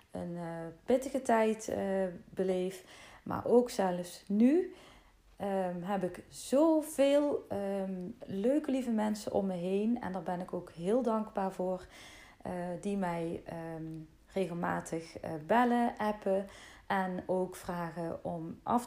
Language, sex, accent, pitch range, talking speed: Dutch, female, Dutch, 175-230 Hz, 125 wpm